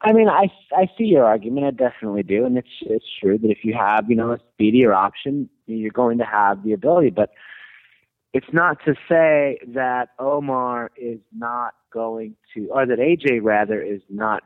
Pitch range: 105-135 Hz